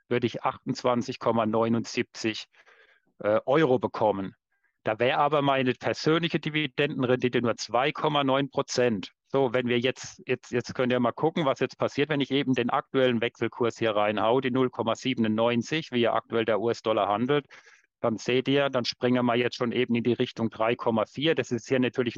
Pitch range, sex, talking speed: 115-140 Hz, male, 160 wpm